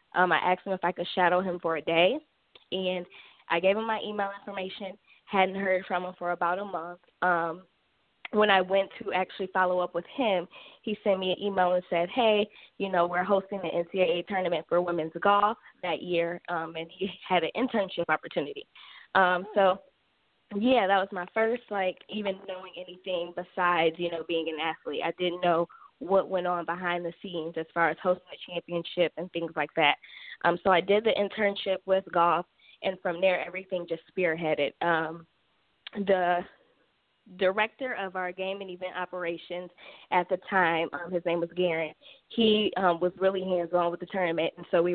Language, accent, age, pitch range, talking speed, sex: English, American, 10-29, 170-195 Hz, 190 wpm, female